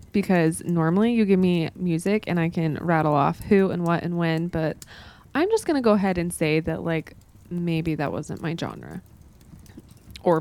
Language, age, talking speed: English, 20-39, 190 wpm